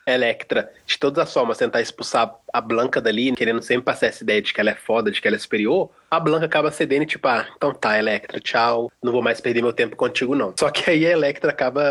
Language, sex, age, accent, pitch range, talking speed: Portuguese, male, 20-39, Brazilian, 120-165 Hz, 250 wpm